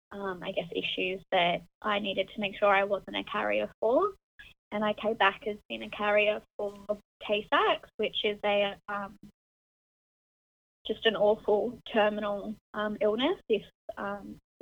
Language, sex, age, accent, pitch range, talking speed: English, female, 20-39, Australian, 190-215 Hz, 150 wpm